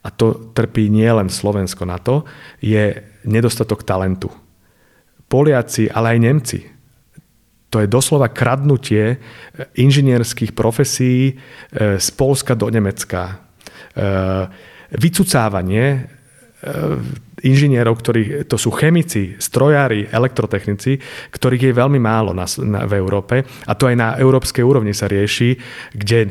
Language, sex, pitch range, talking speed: Slovak, male, 105-130 Hz, 110 wpm